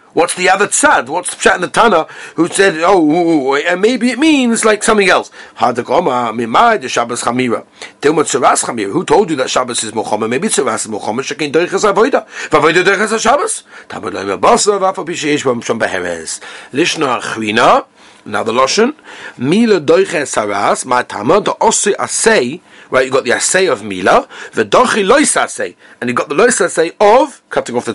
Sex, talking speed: male, 115 wpm